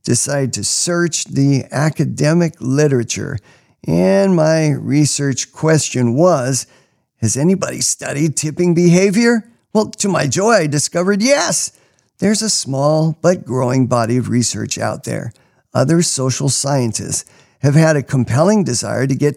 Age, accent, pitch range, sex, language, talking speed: 50-69, American, 120-165 Hz, male, English, 135 wpm